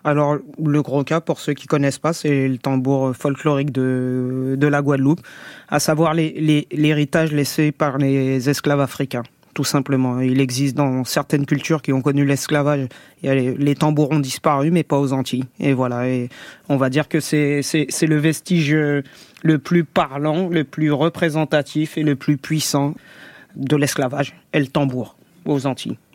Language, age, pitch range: French, 30-49, 135-155 Hz